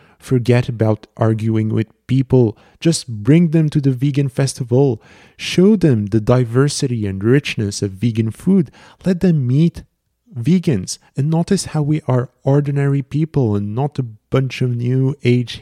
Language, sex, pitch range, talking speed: English, male, 105-140 Hz, 150 wpm